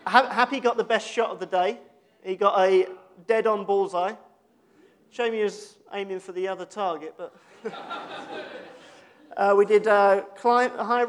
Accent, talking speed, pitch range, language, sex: British, 155 wpm, 195-250 Hz, English, male